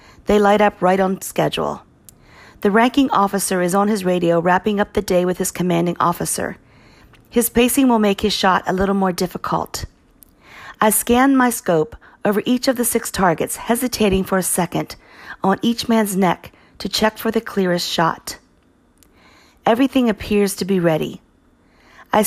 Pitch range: 180-215 Hz